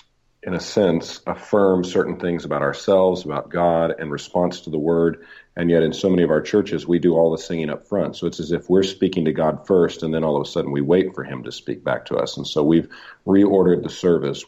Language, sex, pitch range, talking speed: English, male, 75-85 Hz, 250 wpm